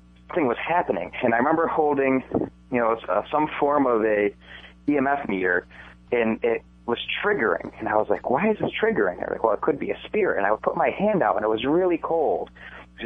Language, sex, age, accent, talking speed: English, male, 30-49, American, 220 wpm